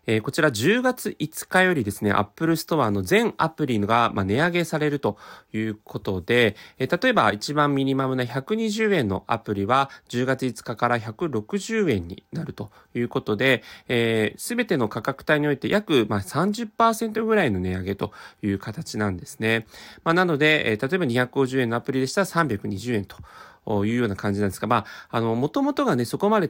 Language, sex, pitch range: Japanese, male, 105-155 Hz